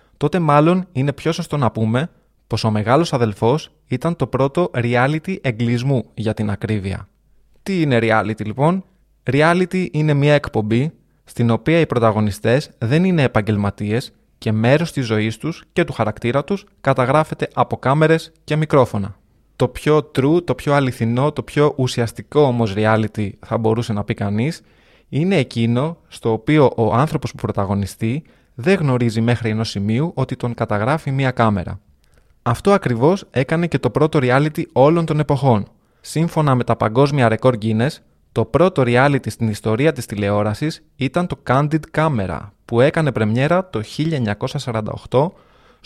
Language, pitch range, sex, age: Greek, 115-155 Hz, male, 20-39